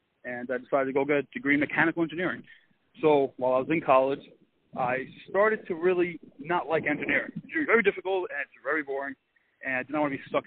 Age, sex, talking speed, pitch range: 30-49, male, 225 wpm, 140-185 Hz